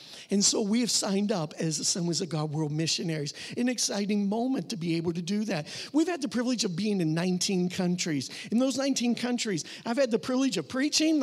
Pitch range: 185-250 Hz